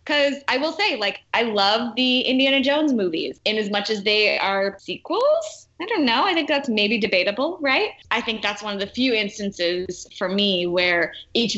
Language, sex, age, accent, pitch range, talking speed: English, female, 20-39, American, 175-220 Hz, 200 wpm